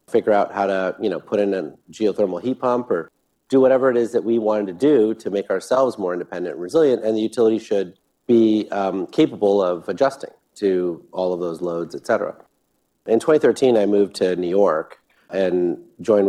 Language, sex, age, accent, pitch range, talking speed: English, male, 40-59, American, 95-150 Hz, 200 wpm